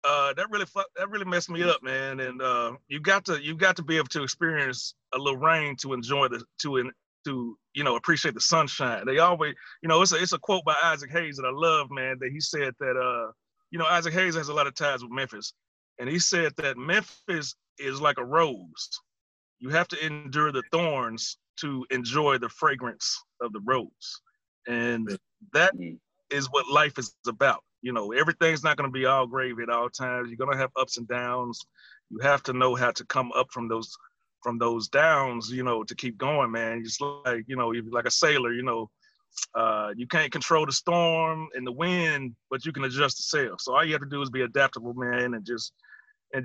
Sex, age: male, 30-49